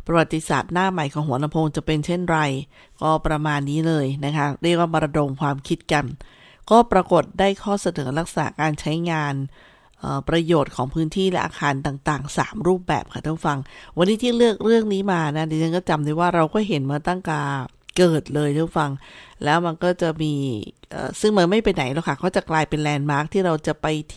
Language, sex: Thai, female